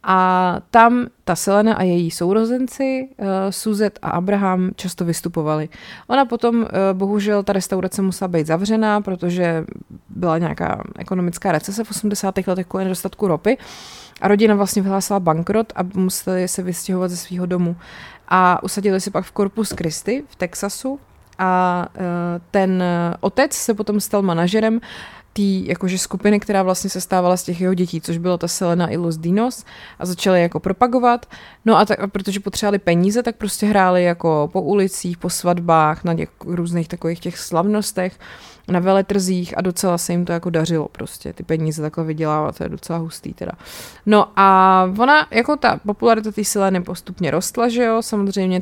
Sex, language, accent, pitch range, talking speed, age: female, Czech, native, 175-205 Hz, 170 wpm, 20-39